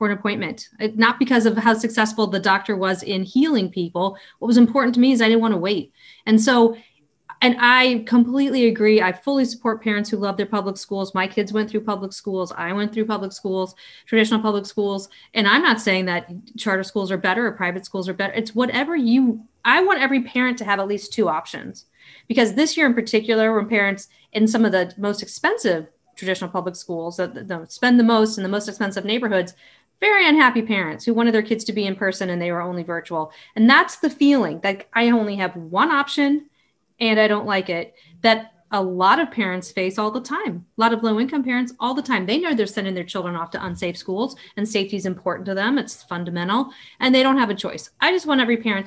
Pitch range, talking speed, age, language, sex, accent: 190-240 Hz, 225 wpm, 30-49, English, female, American